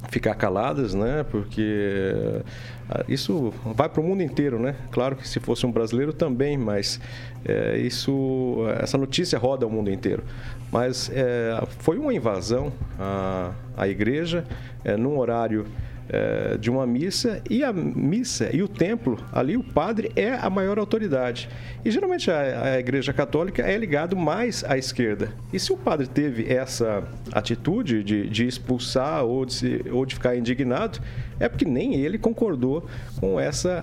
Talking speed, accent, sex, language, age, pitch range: 155 wpm, Brazilian, male, Portuguese, 50-69, 120-160 Hz